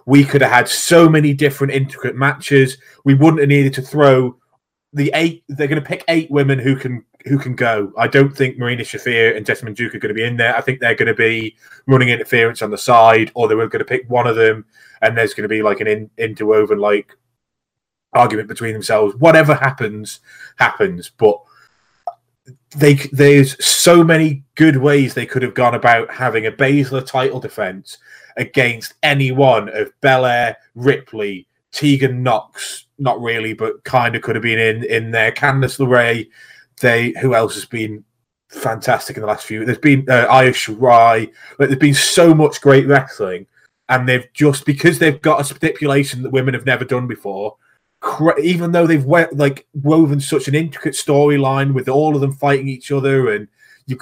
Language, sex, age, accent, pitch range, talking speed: English, male, 20-39, British, 120-145 Hz, 185 wpm